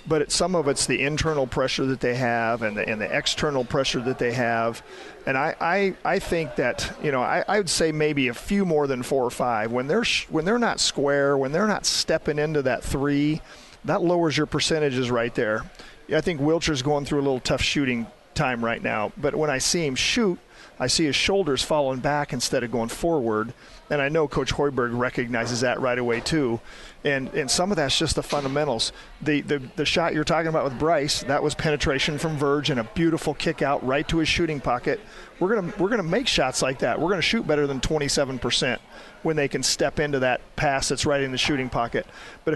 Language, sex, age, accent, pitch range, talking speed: English, male, 40-59, American, 130-160 Hz, 225 wpm